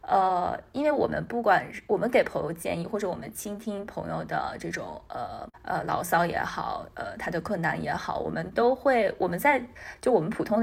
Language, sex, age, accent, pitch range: Chinese, female, 20-39, native, 170-225 Hz